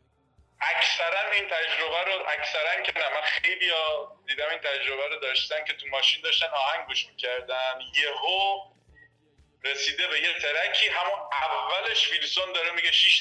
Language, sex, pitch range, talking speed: Persian, male, 145-225 Hz, 140 wpm